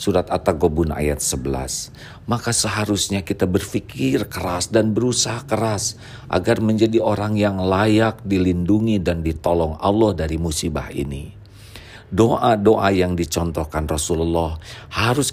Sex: male